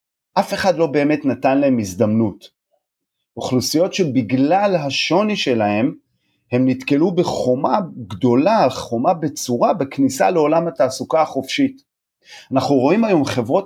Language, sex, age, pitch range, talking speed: Hebrew, male, 40-59, 120-155 Hz, 110 wpm